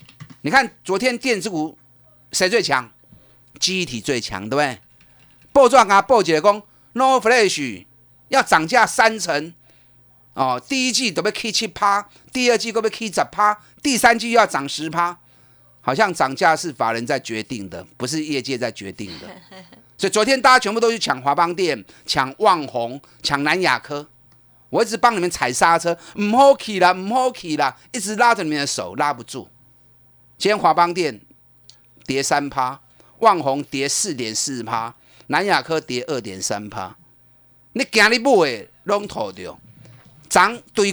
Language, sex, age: Chinese, male, 30-49